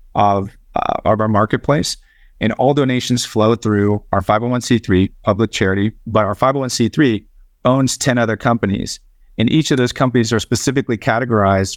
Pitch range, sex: 100-120 Hz, male